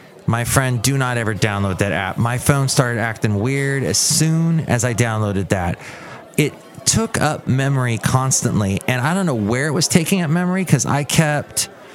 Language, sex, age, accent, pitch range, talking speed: English, male, 30-49, American, 115-150 Hz, 185 wpm